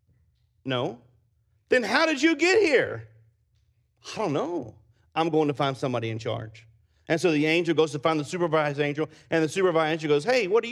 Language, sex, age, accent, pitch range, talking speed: English, male, 40-59, American, 110-140 Hz, 195 wpm